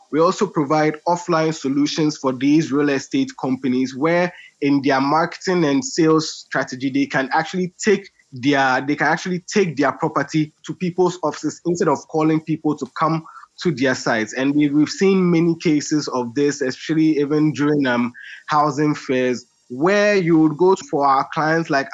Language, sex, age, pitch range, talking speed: English, male, 20-39, 135-160 Hz, 165 wpm